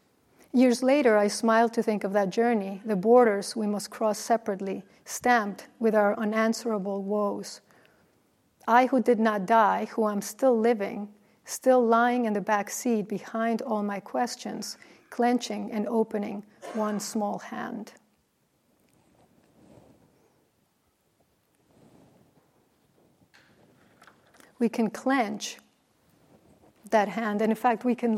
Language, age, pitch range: English, 40-59, 210-240 Hz